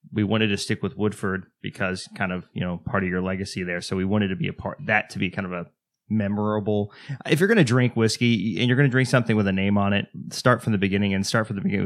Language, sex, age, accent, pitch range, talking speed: English, male, 20-39, American, 95-115 Hz, 285 wpm